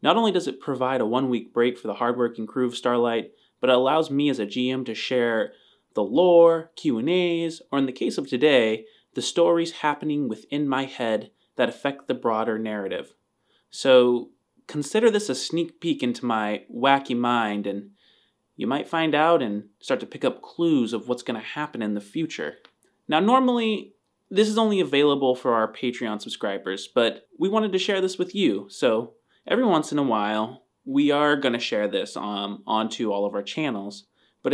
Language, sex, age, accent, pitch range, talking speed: English, male, 30-49, American, 120-170 Hz, 190 wpm